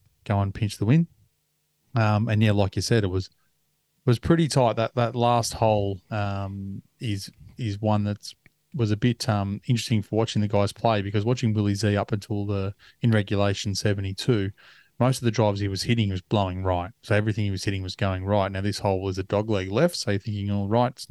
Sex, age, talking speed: male, 20-39, 215 wpm